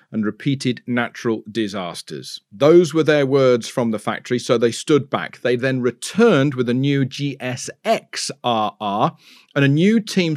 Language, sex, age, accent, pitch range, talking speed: English, male, 40-59, British, 120-160 Hz, 150 wpm